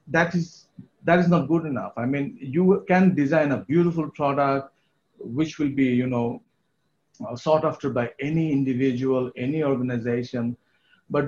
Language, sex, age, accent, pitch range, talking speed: English, male, 50-69, Indian, 125-160 Hz, 150 wpm